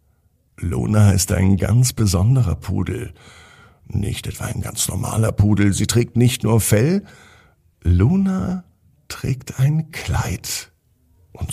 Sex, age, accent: male, 60-79, German